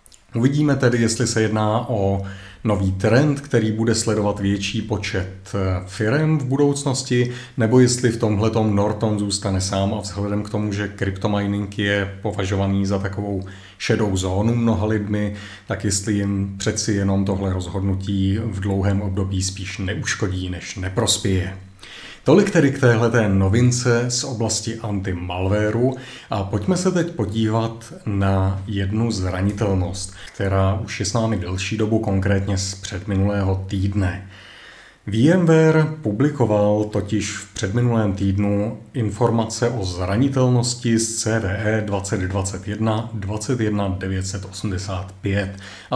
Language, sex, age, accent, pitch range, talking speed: Czech, male, 40-59, native, 95-115 Hz, 115 wpm